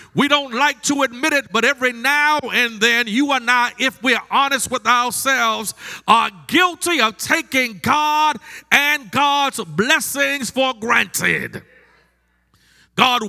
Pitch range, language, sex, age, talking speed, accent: 225-275 Hz, English, male, 40-59, 140 wpm, American